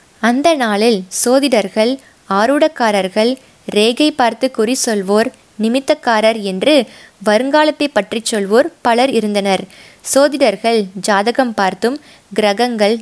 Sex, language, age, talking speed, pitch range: female, Tamil, 20-39, 90 wpm, 205-265 Hz